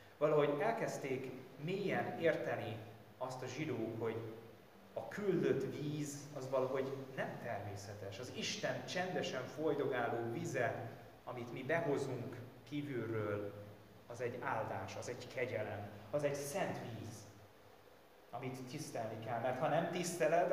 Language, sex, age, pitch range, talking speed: Hungarian, male, 30-49, 115-150 Hz, 120 wpm